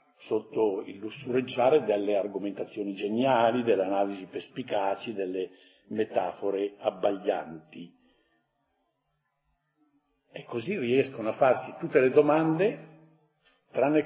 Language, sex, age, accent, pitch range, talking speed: Italian, male, 50-69, native, 110-150 Hz, 90 wpm